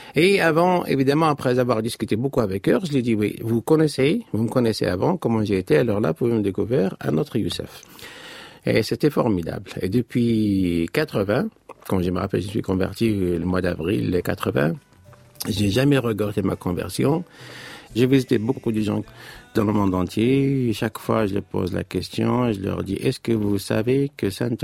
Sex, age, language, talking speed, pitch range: male, 50-69, French, 190 wpm, 95-125 Hz